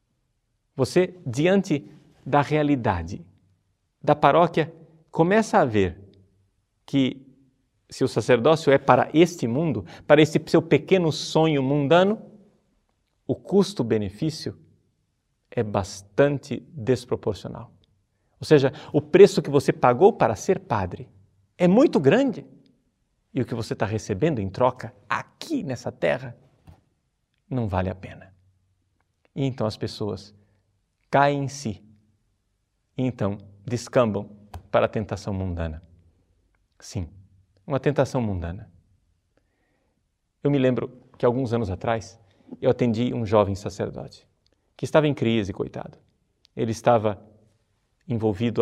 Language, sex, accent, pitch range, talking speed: Portuguese, male, Brazilian, 100-140 Hz, 115 wpm